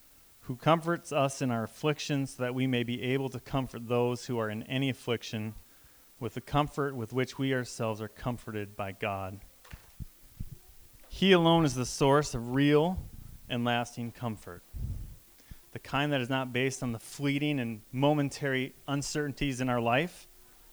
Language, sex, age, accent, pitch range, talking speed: English, male, 30-49, American, 115-145 Hz, 160 wpm